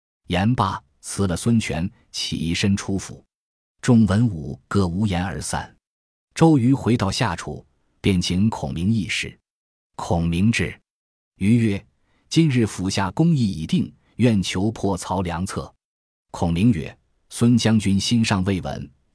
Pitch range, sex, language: 85-115 Hz, male, Chinese